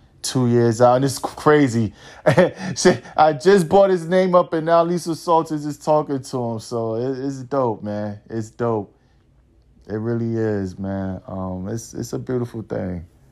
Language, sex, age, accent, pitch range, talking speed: English, male, 20-39, American, 105-130 Hz, 160 wpm